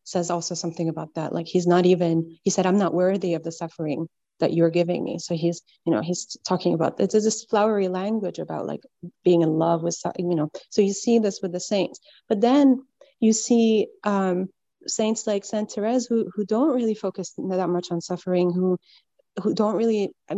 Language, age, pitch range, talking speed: English, 30-49, 175-210 Hz, 210 wpm